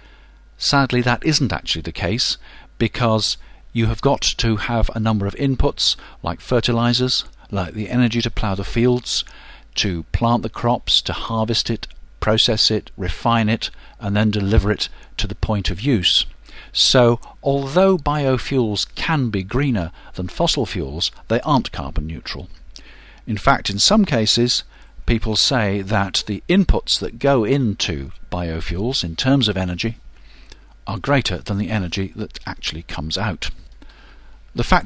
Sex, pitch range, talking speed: male, 90-120 Hz, 150 wpm